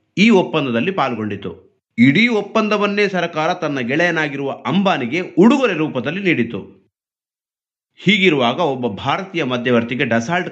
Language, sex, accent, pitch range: Kannada, male, native, 125-175 Hz